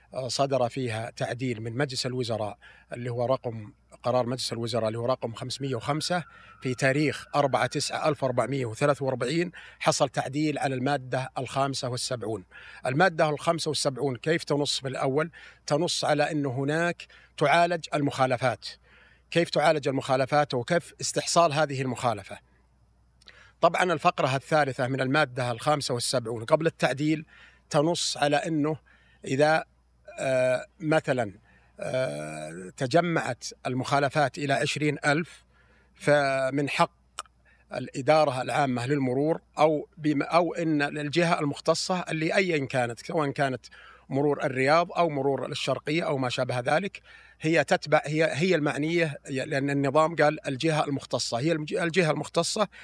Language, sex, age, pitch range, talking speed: Arabic, male, 50-69, 130-160 Hz, 120 wpm